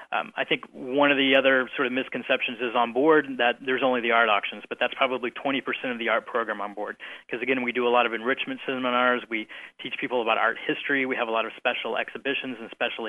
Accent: American